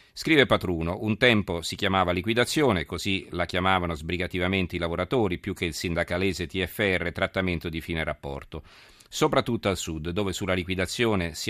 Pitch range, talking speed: 85-105 Hz, 150 wpm